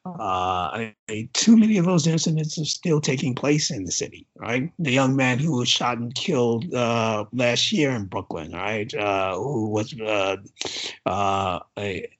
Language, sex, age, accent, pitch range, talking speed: English, male, 60-79, American, 95-140 Hz, 180 wpm